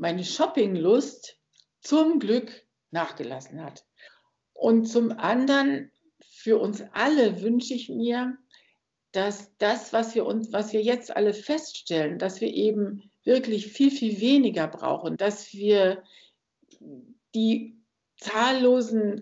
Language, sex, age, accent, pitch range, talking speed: German, female, 60-79, German, 180-235 Hz, 115 wpm